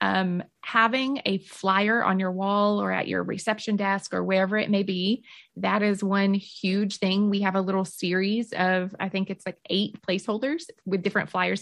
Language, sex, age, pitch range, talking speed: English, female, 20-39, 185-210 Hz, 190 wpm